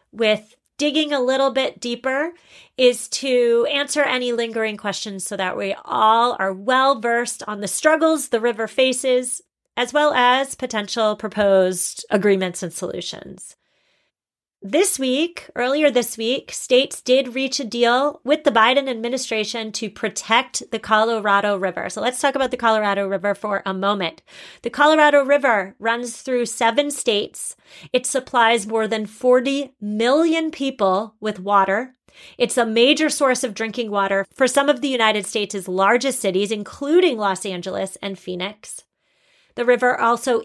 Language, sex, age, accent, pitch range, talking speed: English, female, 30-49, American, 205-265 Hz, 150 wpm